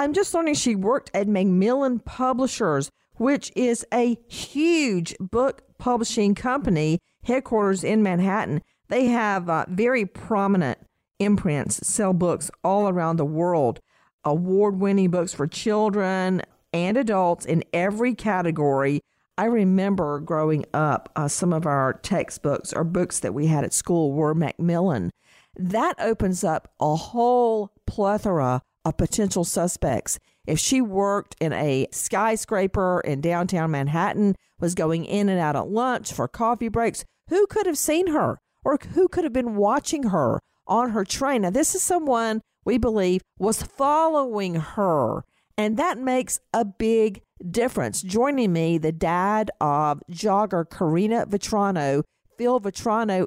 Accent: American